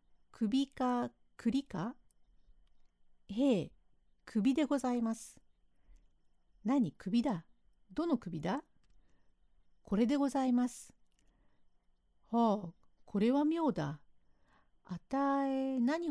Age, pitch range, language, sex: 50-69, 155-260 Hz, Japanese, female